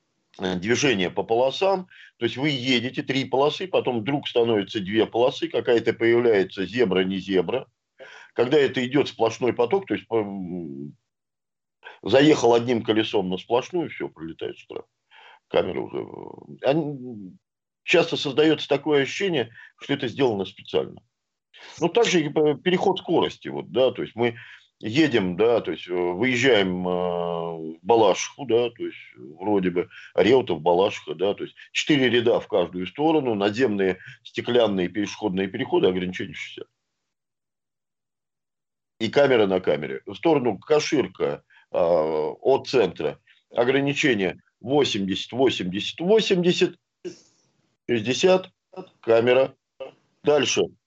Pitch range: 100-160 Hz